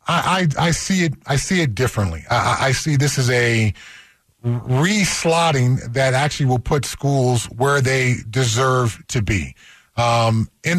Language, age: English, 30-49